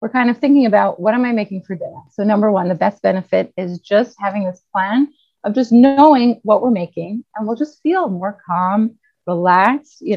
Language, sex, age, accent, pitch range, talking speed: English, female, 30-49, American, 200-245 Hz, 210 wpm